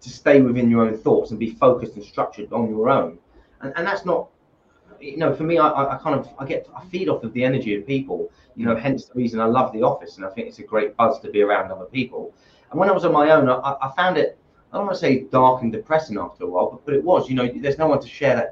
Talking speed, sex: 295 wpm, male